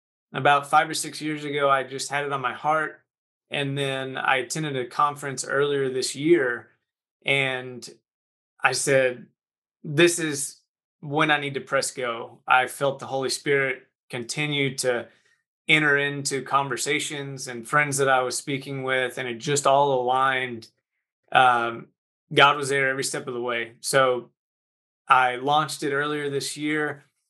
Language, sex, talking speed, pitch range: English, male, 155 wpm, 130-150 Hz